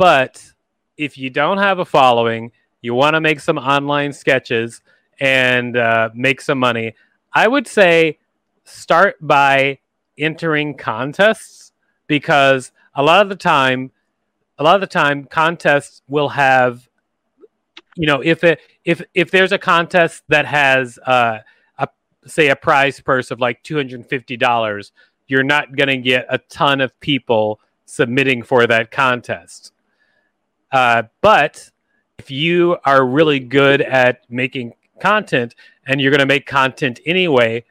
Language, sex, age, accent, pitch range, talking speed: English, male, 30-49, American, 125-145 Hz, 140 wpm